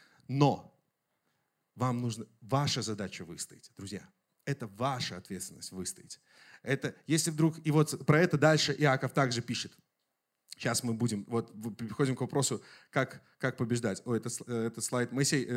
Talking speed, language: 145 wpm, Russian